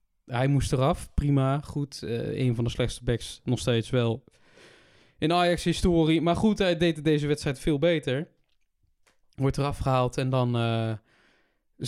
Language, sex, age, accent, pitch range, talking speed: Dutch, male, 20-39, Dutch, 125-155 Hz, 150 wpm